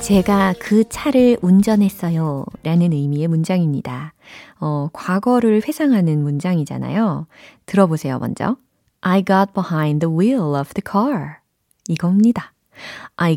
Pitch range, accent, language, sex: 160-235 Hz, native, Korean, female